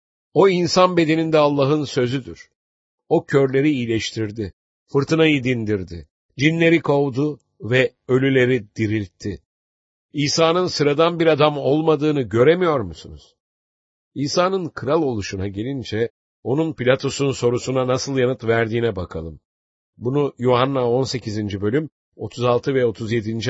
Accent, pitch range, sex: Turkish, 100-140 Hz, male